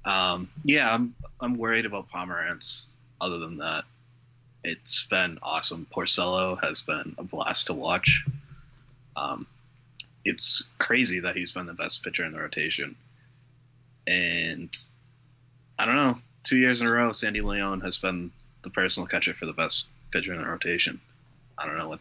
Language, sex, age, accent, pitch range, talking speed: English, male, 20-39, American, 95-130 Hz, 160 wpm